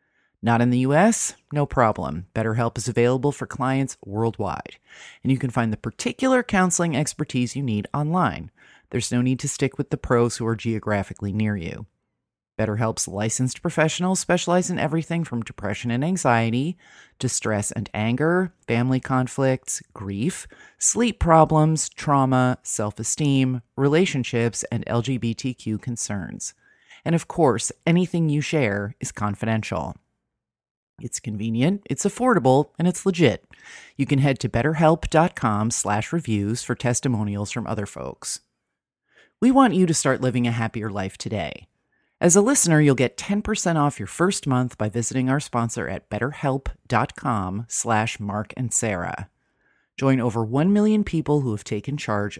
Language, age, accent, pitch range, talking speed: English, 30-49, American, 110-150 Hz, 140 wpm